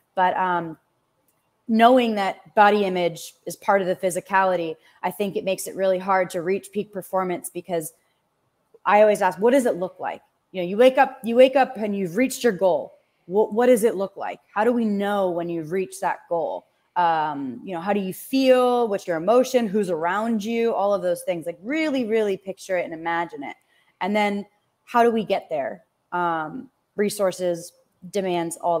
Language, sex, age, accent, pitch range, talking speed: English, female, 20-39, American, 180-230 Hz, 200 wpm